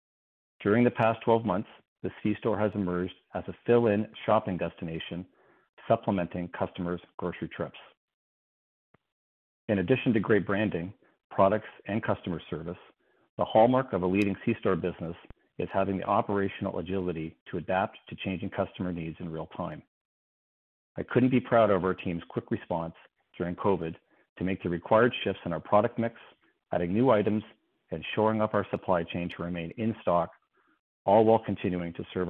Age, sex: 40-59, male